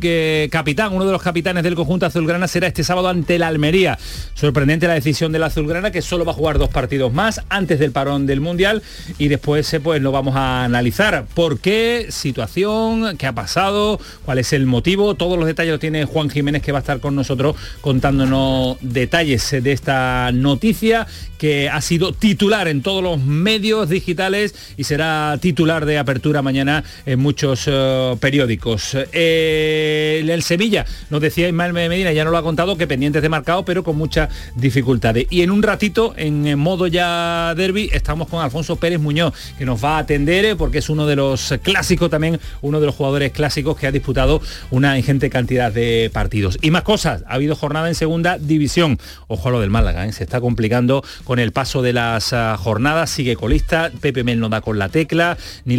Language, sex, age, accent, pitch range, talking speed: Spanish, male, 40-59, Spanish, 130-170 Hz, 195 wpm